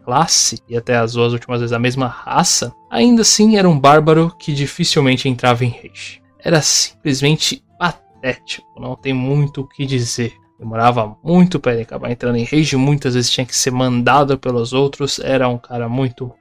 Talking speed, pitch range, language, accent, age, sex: 180 wpm, 125-150 Hz, Portuguese, Brazilian, 20-39, male